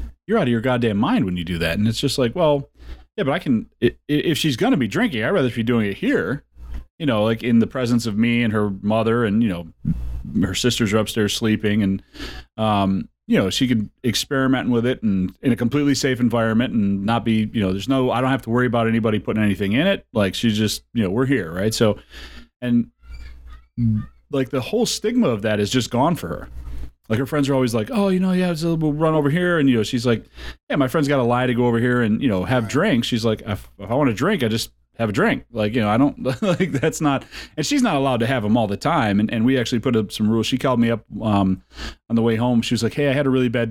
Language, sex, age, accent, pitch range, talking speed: English, male, 30-49, American, 100-125 Hz, 265 wpm